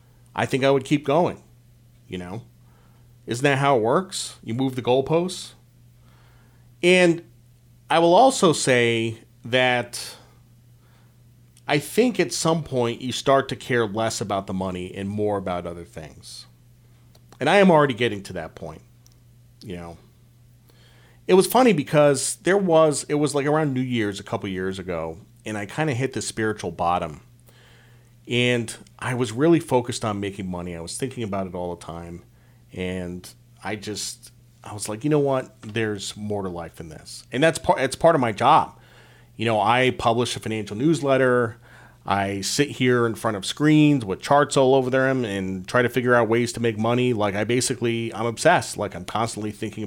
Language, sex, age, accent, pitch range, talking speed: English, male, 40-59, American, 105-130 Hz, 180 wpm